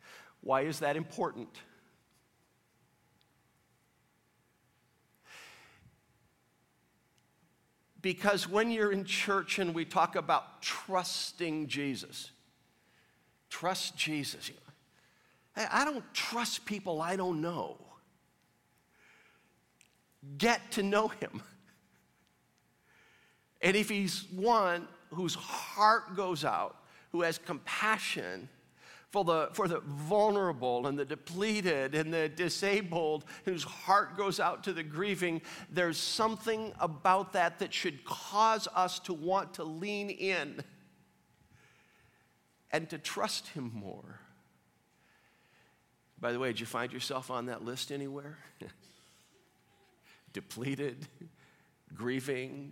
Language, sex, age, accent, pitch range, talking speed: English, male, 50-69, American, 130-195 Hz, 100 wpm